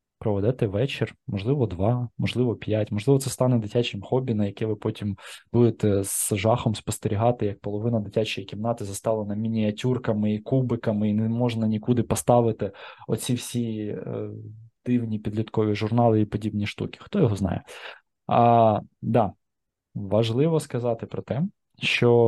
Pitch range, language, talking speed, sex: 105-120 Hz, Ukrainian, 135 wpm, male